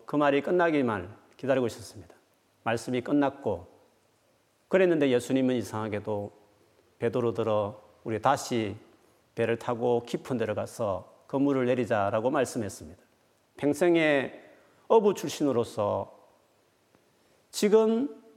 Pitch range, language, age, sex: 115-165 Hz, Korean, 40-59, male